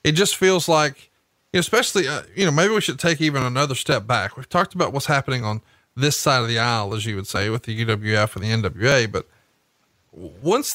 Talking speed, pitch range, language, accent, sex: 220 wpm, 125-170 Hz, English, American, male